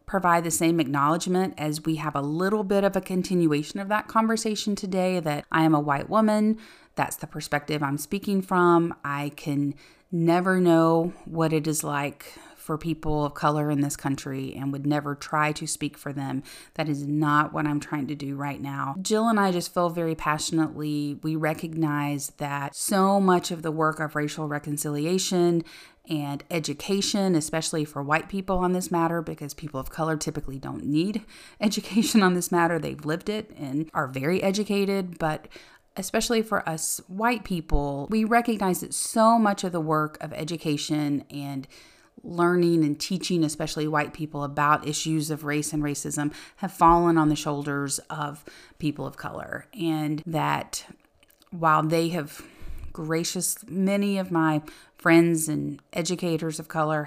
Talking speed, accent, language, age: 165 wpm, American, English, 30-49